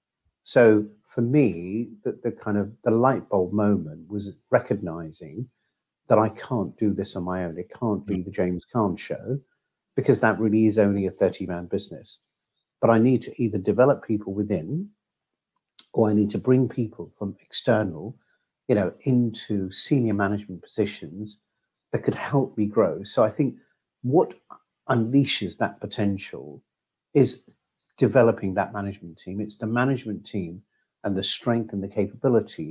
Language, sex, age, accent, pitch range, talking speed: English, male, 50-69, British, 95-115 Hz, 155 wpm